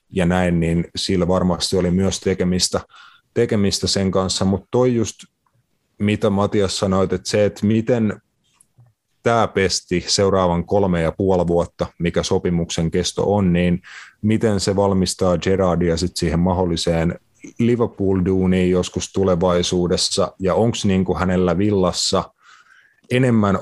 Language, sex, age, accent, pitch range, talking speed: Finnish, male, 30-49, native, 90-105 Hz, 125 wpm